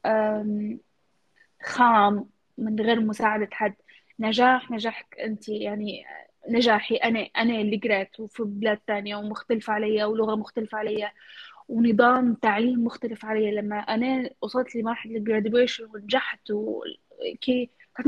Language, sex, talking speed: Arabic, female, 115 wpm